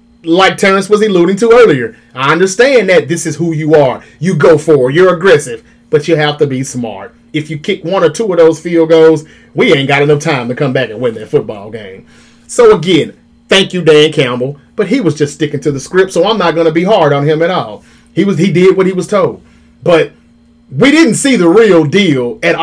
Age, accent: 30-49, American